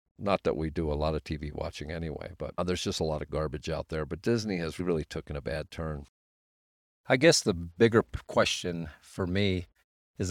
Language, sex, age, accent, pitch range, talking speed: English, male, 50-69, American, 80-95 Hz, 205 wpm